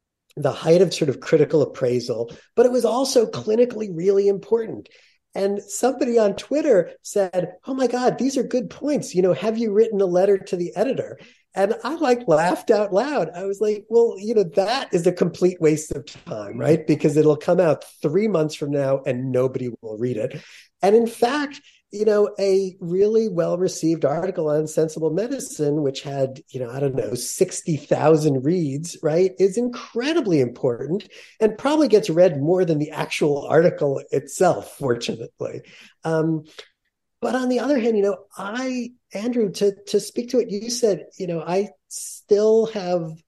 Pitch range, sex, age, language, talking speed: 150-220 Hz, male, 40-59, English, 180 wpm